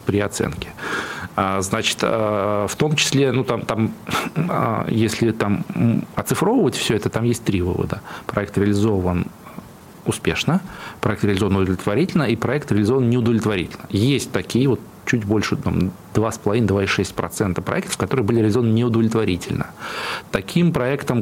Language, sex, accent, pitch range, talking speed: Russian, male, native, 100-120 Hz, 115 wpm